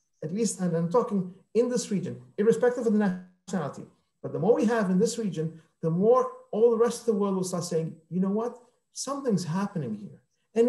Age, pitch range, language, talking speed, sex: 50-69, 165-225 Hz, English, 215 wpm, male